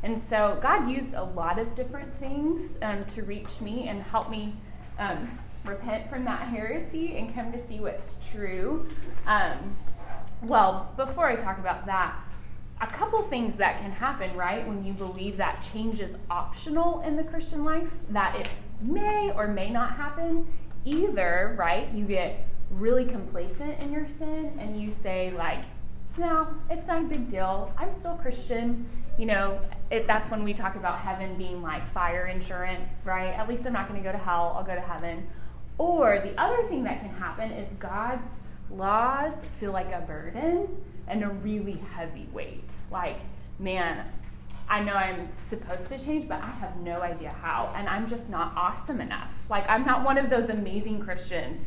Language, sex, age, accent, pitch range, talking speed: English, female, 20-39, American, 190-275 Hz, 180 wpm